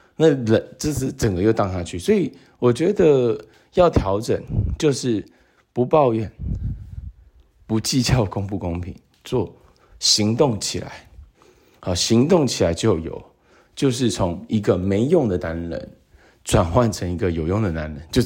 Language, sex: Chinese, male